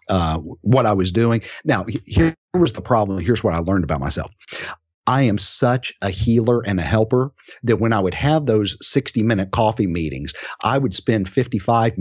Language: English